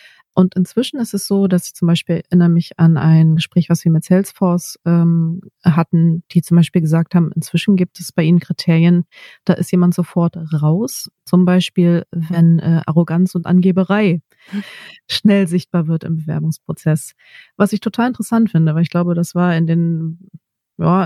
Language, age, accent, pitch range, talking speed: German, 30-49, German, 170-195 Hz, 175 wpm